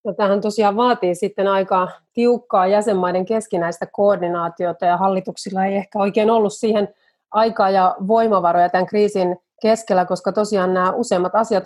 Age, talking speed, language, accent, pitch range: 30-49, 140 wpm, Finnish, native, 180-210 Hz